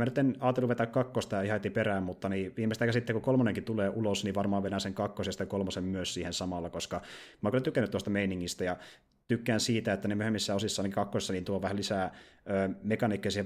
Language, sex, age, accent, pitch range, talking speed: Finnish, male, 30-49, native, 95-110 Hz, 215 wpm